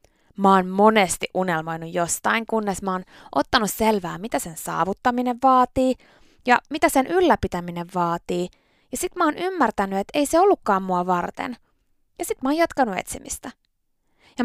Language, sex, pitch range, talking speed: Finnish, female, 180-255 Hz, 155 wpm